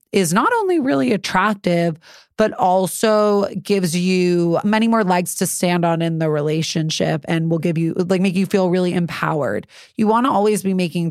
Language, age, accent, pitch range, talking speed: English, 30-49, American, 165-195 Hz, 185 wpm